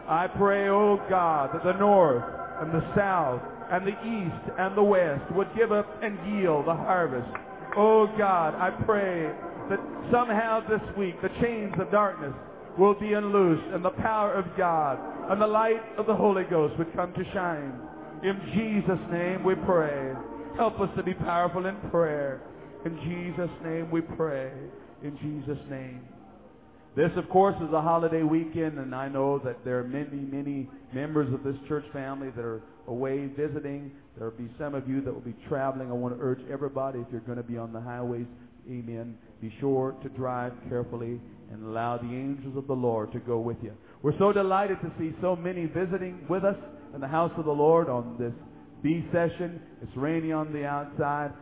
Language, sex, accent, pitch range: English, male, American, 135-185 Hz